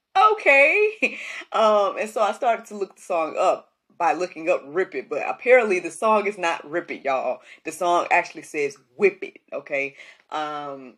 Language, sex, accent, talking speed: English, female, American, 180 wpm